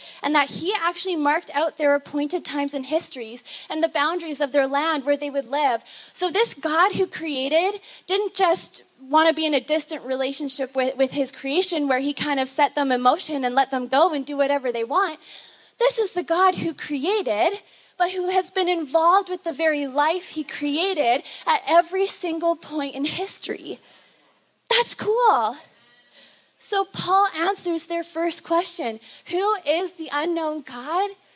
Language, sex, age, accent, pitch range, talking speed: English, female, 20-39, American, 280-355 Hz, 180 wpm